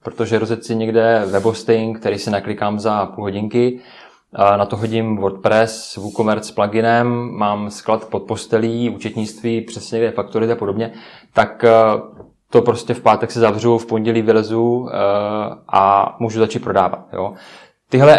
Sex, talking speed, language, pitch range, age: male, 140 wpm, Czech, 110-120 Hz, 20-39